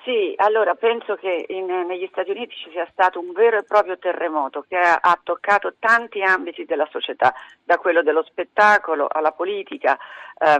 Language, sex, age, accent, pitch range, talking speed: Italian, female, 40-59, native, 155-205 Hz, 170 wpm